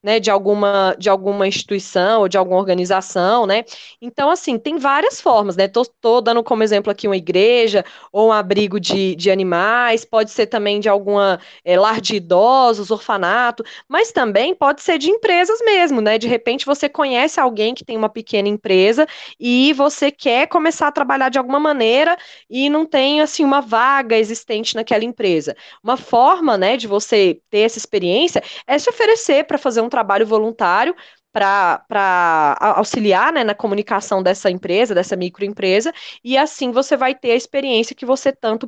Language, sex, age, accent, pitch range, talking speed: Portuguese, female, 20-39, Brazilian, 205-275 Hz, 175 wpm